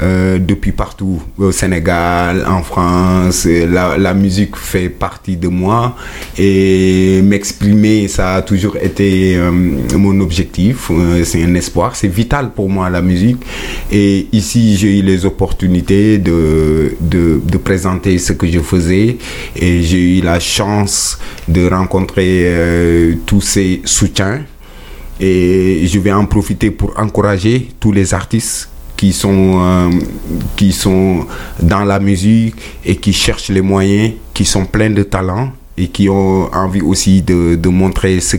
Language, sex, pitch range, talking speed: French, male, 85-100 Hz, 150 wpm